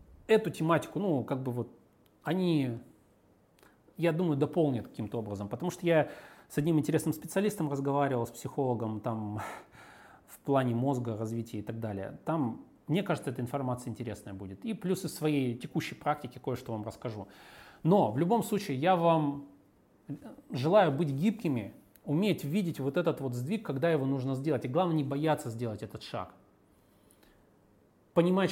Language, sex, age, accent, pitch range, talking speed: Russian, male, 30-49, native, 115-160 Hz, 150 wpm